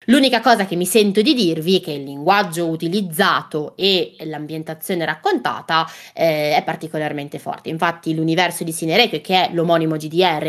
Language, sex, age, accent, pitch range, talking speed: Italian, female, 20-39, native, 165-210 Hz, 155 wpm